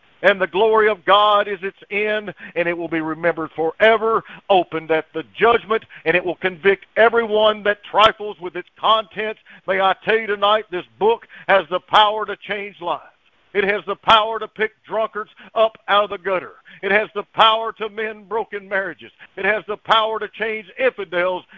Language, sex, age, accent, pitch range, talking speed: English, male, 60-79, American, 175-210 Hz, 190 wpm